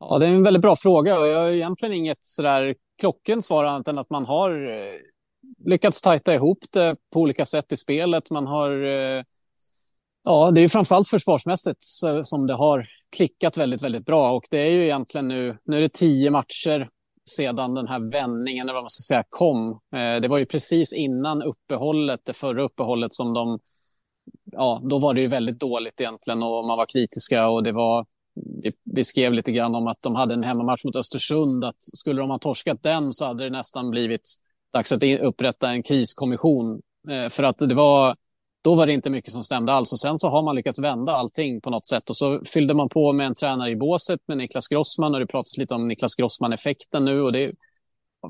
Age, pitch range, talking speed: 30-49, 125-155 Hz, 205 wpm